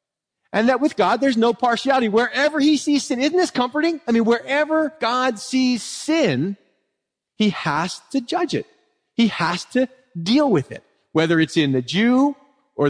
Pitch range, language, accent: 150-220 Hz, English, American